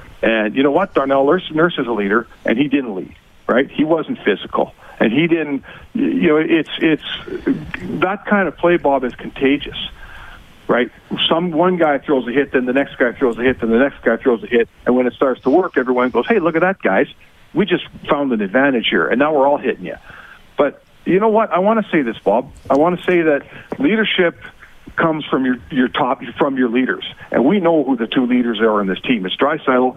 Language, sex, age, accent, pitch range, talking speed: English, male, 50-69, American, 125-180 Hz, 230 wpm